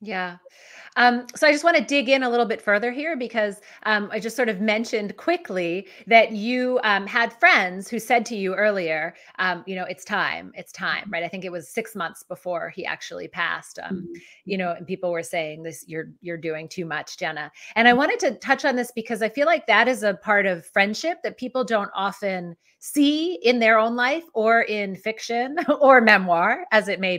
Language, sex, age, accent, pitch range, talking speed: English, female, 30-49, American, 180-240 Hz, 215 wpm